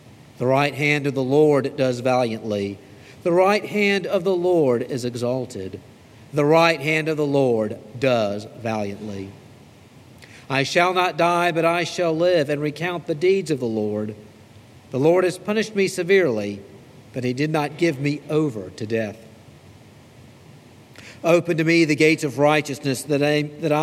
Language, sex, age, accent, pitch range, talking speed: English, male, 50-69, American, 120-170 Hz, 155 wpm